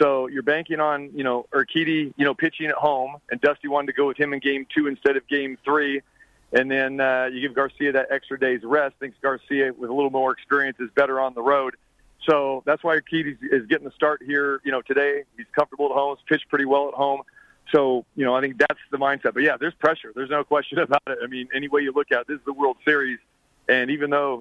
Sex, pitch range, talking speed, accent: male, 130-145 Hz, 255 wpm, American